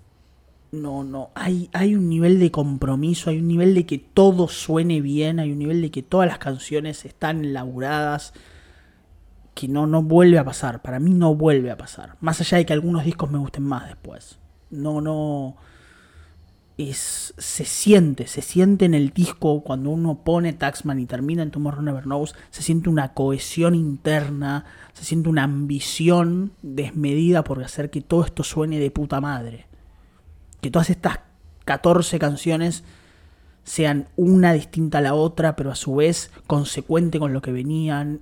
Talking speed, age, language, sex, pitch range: 170 wpm, 30-49, Spanish, male, 125-165 Hz